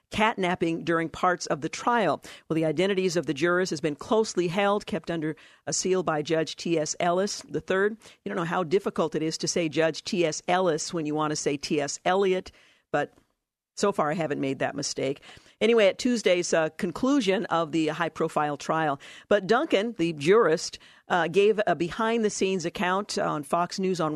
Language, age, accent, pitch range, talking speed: English, 50-69, American, 160-195 Hz, 185 wpm